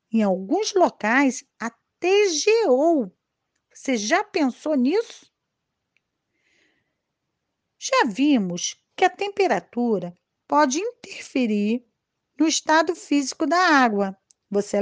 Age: 40-59